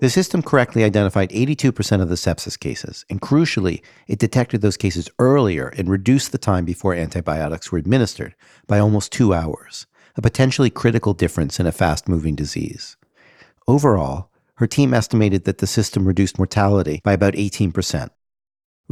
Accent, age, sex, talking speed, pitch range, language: American, 50-69, male, 150 wpm, 90-120 Hz, English